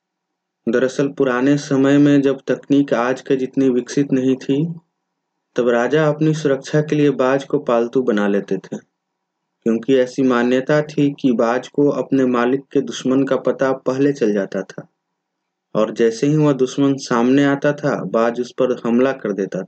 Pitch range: 125-150 Hz